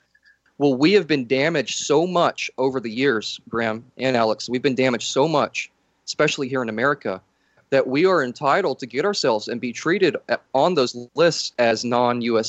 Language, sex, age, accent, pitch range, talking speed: English, male, 30-49, American, 115-140 Hz, 180 wpm